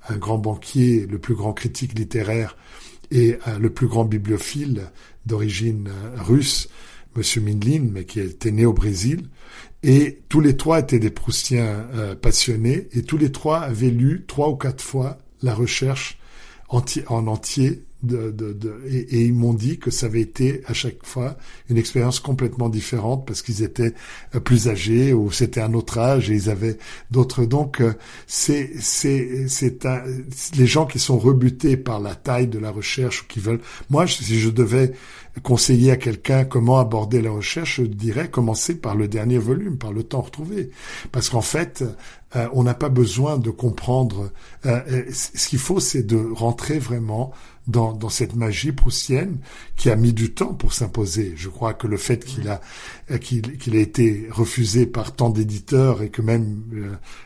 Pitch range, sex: 110-130 Hz, male